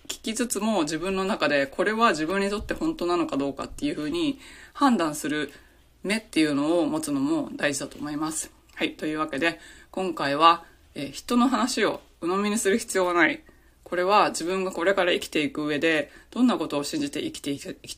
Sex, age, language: female, 20-39, Japanese